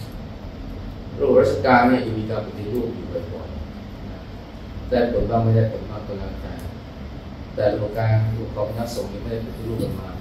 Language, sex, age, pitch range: Thai, male, 20-39, 95-115 Hz